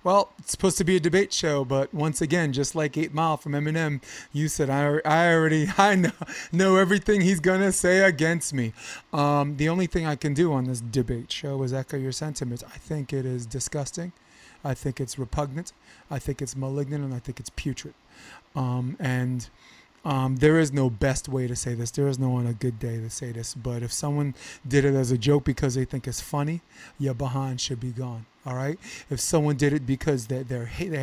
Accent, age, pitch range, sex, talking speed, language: American, 30-49, 130-165 Hz, male, 215 wpm, English